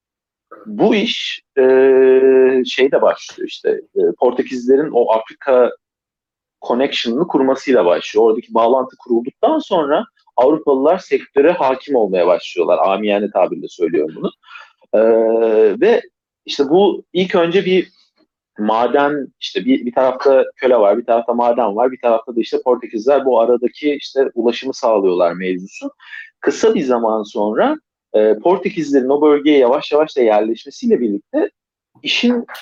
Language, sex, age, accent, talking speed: Turkish, male, 40-59, native, 125 wpm